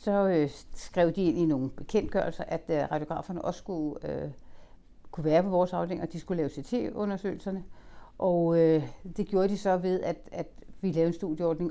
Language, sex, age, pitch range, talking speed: Danish, female, 60-79, 155-195 Hz, 190 wpm